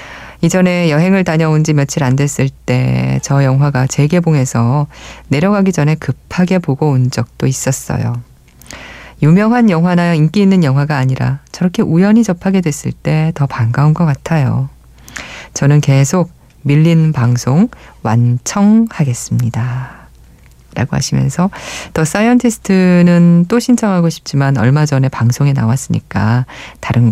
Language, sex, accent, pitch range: Korean, female, native, 125-165 Hz